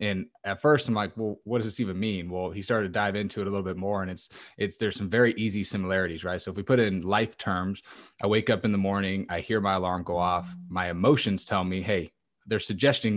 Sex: male